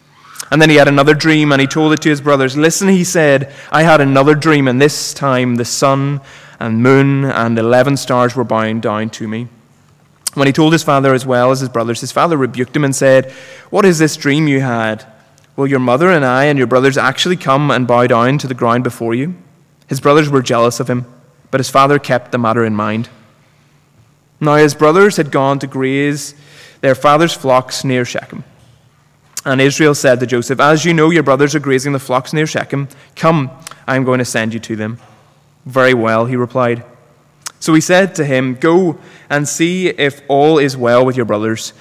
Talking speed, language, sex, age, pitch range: 205 wpm, English, male, 20-39, 125-150 Hz